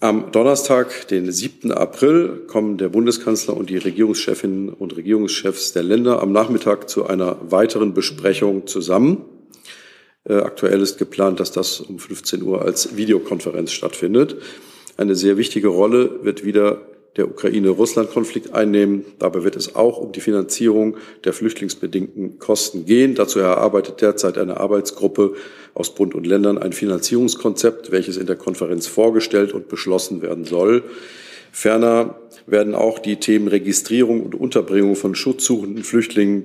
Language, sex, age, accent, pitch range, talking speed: German, male, 50-69, German, 95-110 Hz, 140 wpm